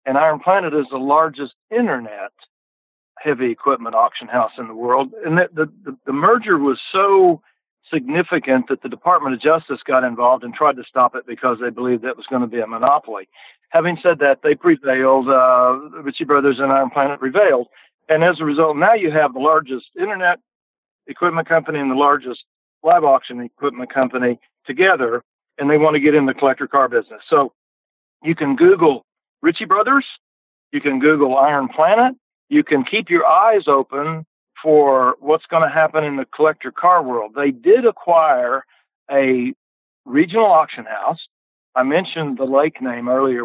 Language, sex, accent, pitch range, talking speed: English, male, American, 130-160 Hz, 175 wpm